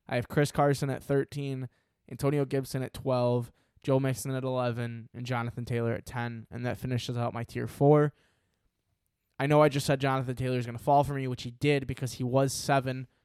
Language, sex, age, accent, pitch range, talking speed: English, male, 10-29, American, 120-140 Hz, 210 wpm